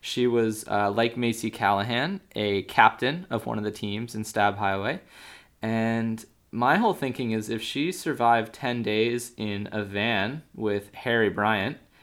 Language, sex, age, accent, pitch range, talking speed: English, male, 20-39, American, 100-115 Hz, 160 wpm